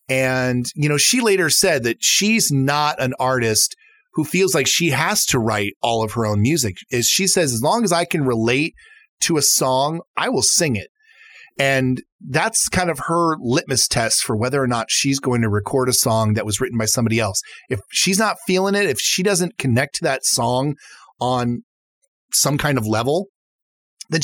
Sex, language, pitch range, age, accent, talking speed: male, English, 115-165 Hz, 30-49, American, 200 wpm